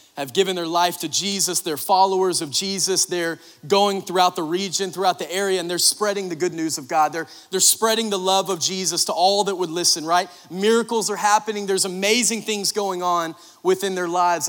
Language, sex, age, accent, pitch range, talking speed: English, male, 30-49, American, 180-235 Hz, 205 wpm